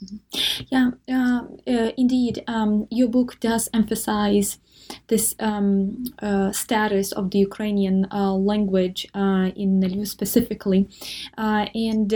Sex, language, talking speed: female, English, 120 wpm